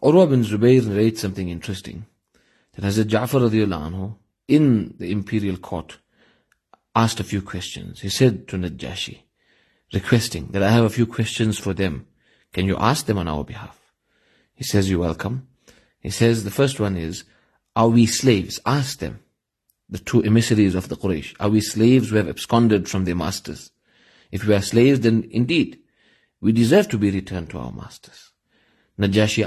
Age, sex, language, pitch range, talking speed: 30-49, male, English, 95-115 Hz, 170 wpm